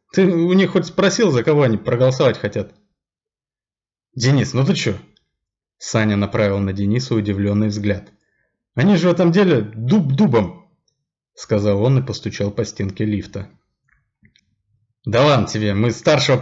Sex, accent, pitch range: male, native, 115-160 Hz